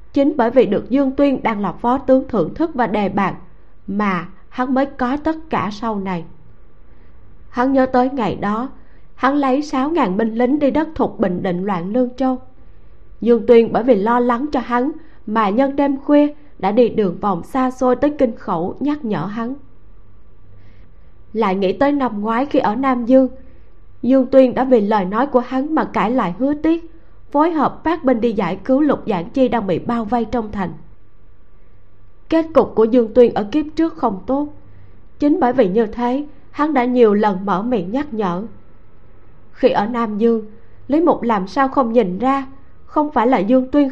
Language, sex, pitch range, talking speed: Vietnamese, female, 205-270 Hz, 195 wpm